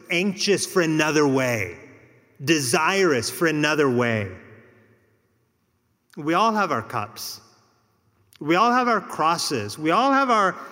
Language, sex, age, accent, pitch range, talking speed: English, male, 30-49, American, 130-200 Hz, 125 wpm